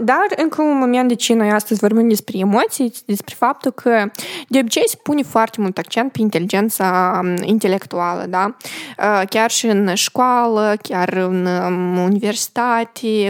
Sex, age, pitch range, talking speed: female, 20-39, 195-235 Hz, 145 wpm